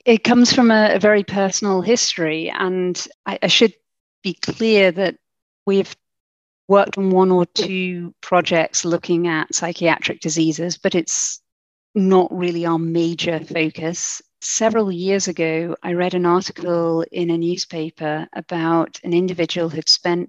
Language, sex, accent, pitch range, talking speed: English, female, British, 165-190 Hz, 140 wpm